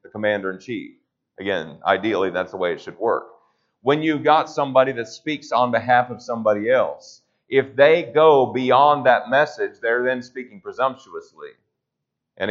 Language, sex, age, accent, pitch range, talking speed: English, male, 40-59, American, 115-145 Hz, 150 wpm